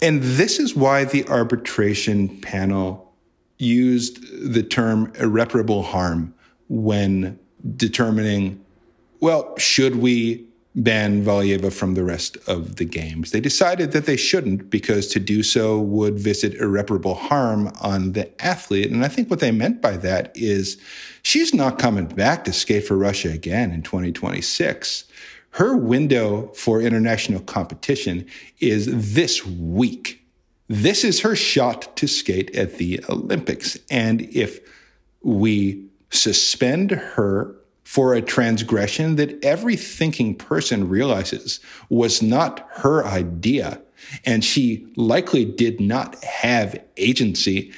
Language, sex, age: English, male, 50-69